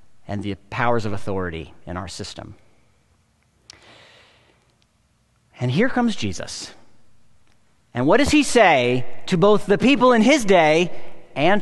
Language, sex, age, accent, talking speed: English, male, 40-59, American, 130 wpm